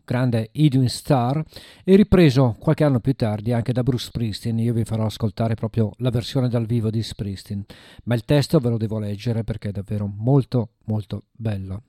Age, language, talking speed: 50-69, Italian, 185 wpm